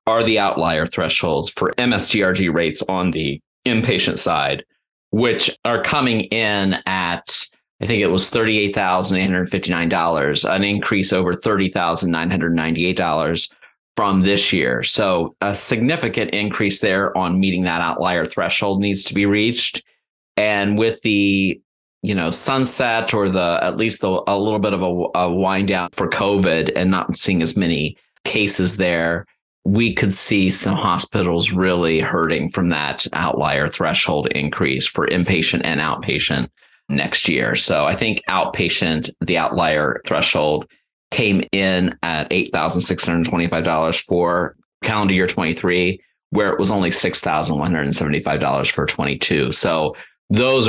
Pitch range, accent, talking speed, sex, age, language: 85-100 Hz, American, 135 wpm, male, 30-49, English